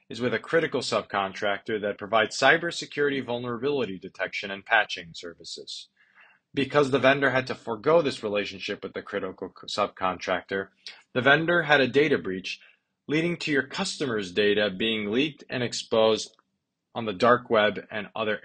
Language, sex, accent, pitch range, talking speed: English, male, American, 105-140 Hz, 150 wpm